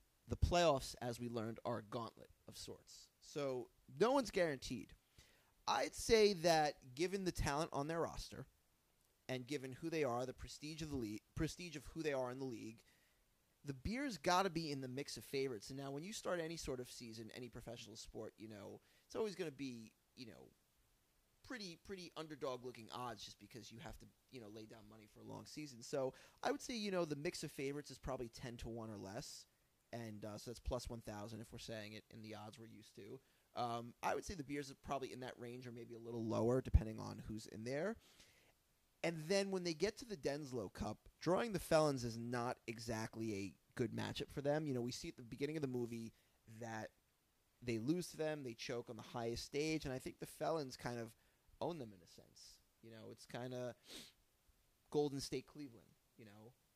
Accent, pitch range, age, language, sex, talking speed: American, 115-150 Hz, 30-49, English, male, 220 wpm